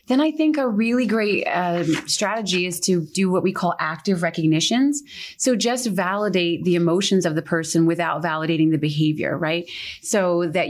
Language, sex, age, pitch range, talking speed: English, female, 30-49, 160-195 Hz, 175 wpm